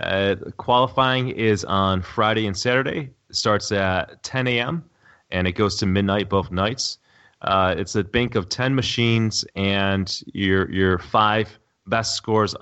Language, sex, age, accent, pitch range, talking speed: English, male, 30-49, American, 95-115 Hz, 150 wpm